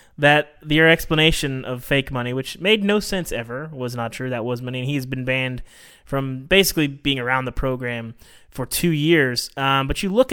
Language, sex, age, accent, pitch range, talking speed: English, male, 20-39, American, 120-165 Hz, 200 wpm